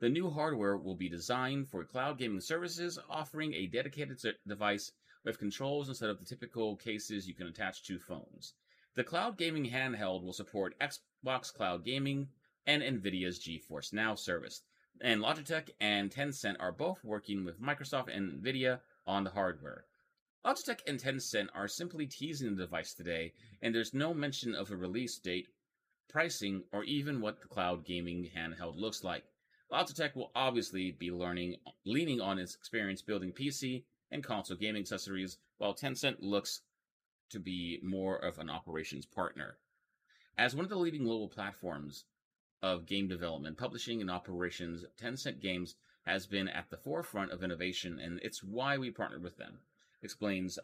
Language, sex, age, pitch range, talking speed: English, male, 30-49, 90-130 Hz, 160 wpm